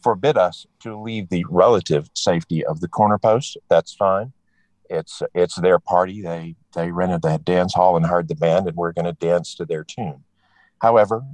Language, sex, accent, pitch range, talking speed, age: English, male, American, 85-125 Hz, 185 wpm, 50-69